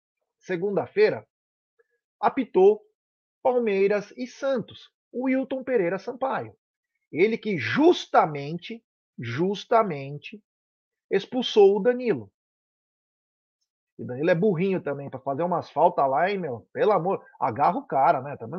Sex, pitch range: male, 170-265 Hz